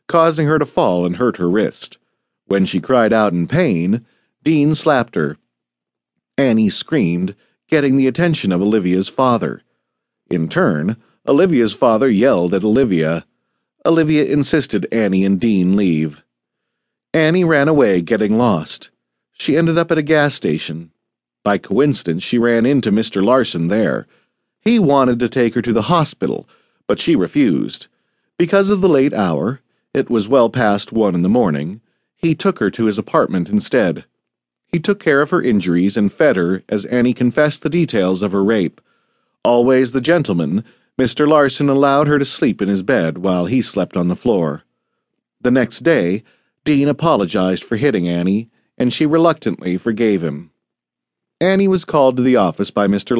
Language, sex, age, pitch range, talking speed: English, male, 40-59, 95-150 Hz, 165 wpm